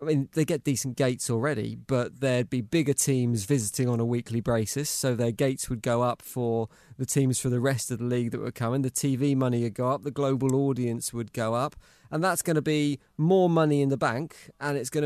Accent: British